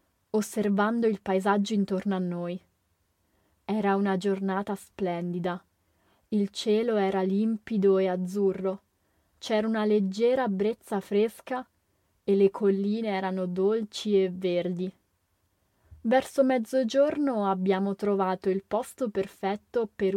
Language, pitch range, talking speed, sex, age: English, 185-210 Hz, 105 wpm, female, 20-39